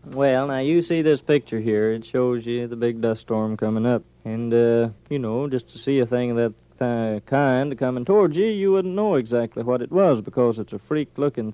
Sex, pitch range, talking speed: male, 110-135 Hz, 225 wpm